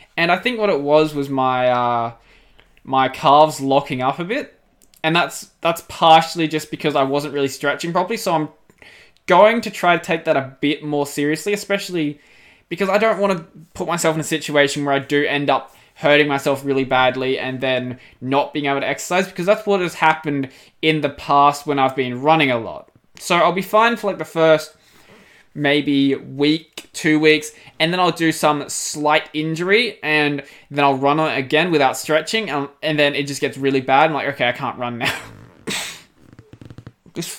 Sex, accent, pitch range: male, Australian, 140-170 Hz